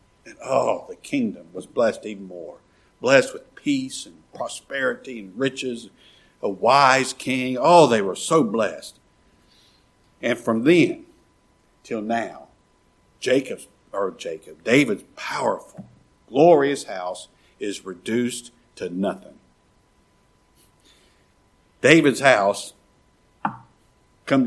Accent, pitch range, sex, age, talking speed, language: American, 115-160 Hz, male, 60-79, 105 wpm, English